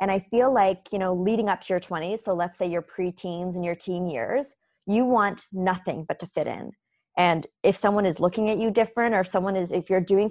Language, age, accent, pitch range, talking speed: English, 20-39, American, 180-220 Hz, 245 wpm